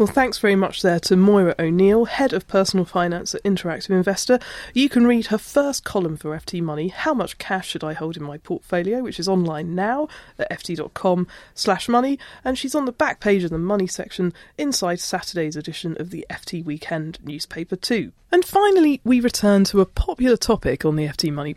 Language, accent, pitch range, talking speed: English, British, 170-245 Hz, 200 wpm